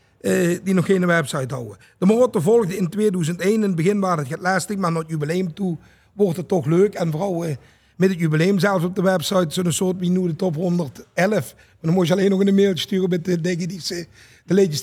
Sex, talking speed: male, 225 wpm